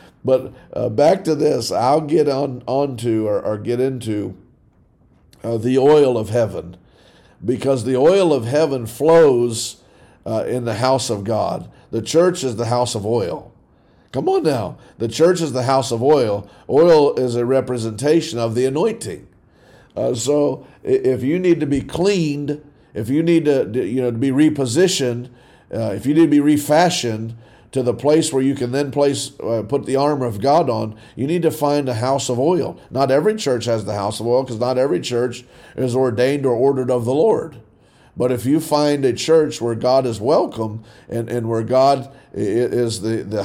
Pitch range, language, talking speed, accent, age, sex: 115-140 Hz, English, 190 wpm, American, 50-69, male